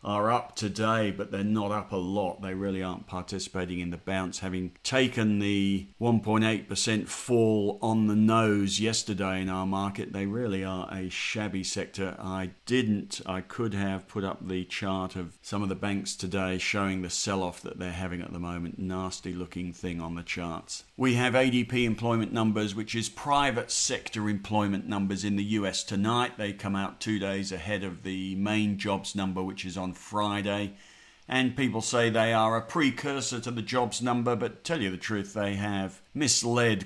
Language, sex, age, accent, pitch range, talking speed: English, male, 50-69, British, 95-110 Hz, 185 wpm